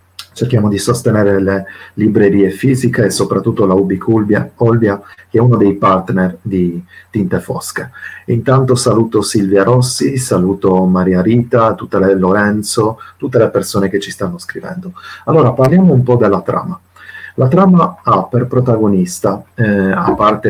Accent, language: native, Italian